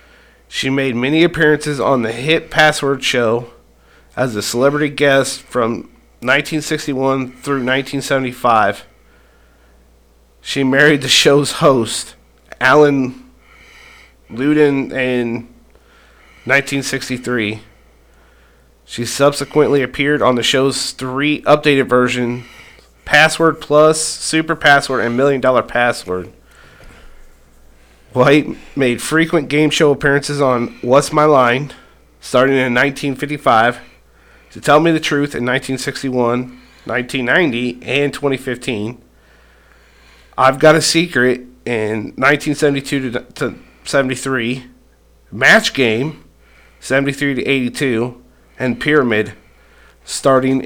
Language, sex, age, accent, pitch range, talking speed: English, male, 30-49, American, 115-140 Hz, 100 wpm